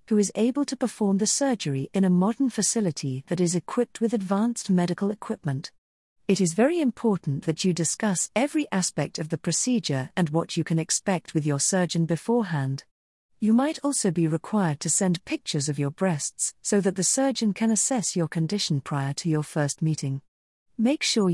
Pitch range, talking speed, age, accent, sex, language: 150-215 Hz, 185 wpm, 50-69, British, female, English